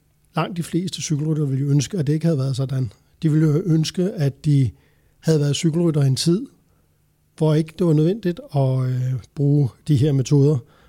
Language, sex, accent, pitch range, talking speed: Danish, male, native, 140-175 Hz, 185 wpm